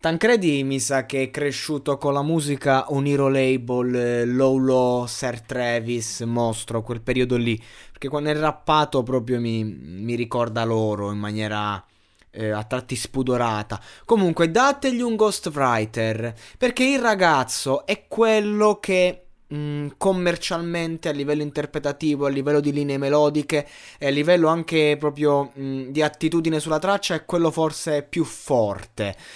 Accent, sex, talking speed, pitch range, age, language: native, male, 140 wpm, 130-165 Hz, 20-39, Italian